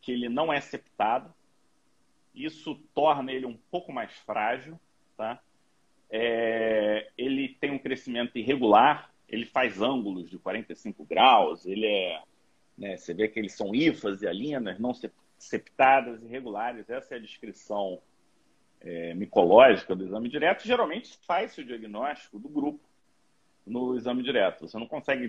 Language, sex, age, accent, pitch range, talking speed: Portuguese, male, 40-59, Brazilian, 120-195 Hz, 130 wpm